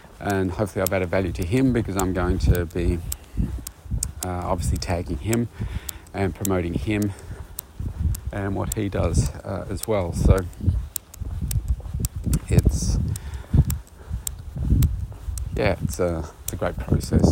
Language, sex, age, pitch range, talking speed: English, male, 40-59, 85-100 Hz, 120 wpm